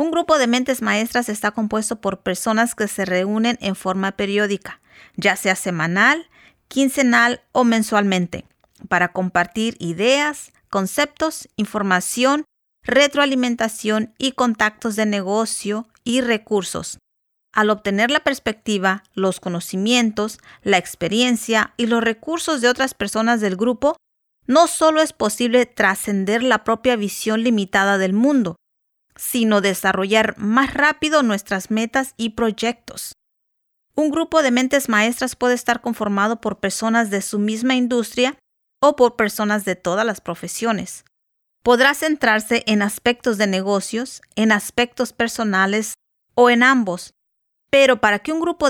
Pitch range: 205-255 Hz